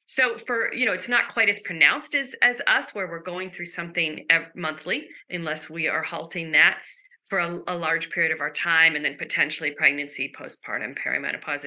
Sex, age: female, 40-59